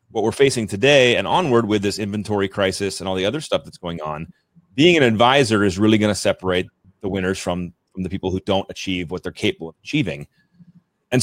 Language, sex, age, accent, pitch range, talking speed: English, male, 30-49, American, 100-130 Hz, 220 wpm